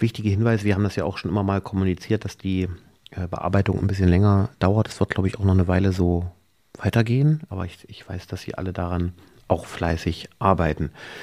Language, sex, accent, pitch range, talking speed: German, male, German, 95-120 Hz, 210 wpm